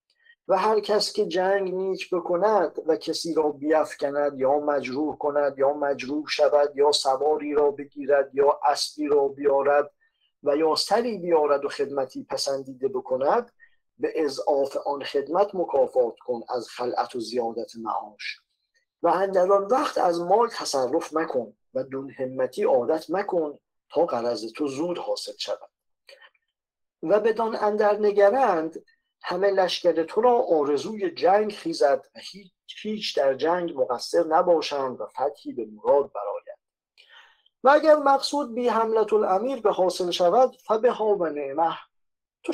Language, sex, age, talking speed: English, male, 50-69, 140 wpm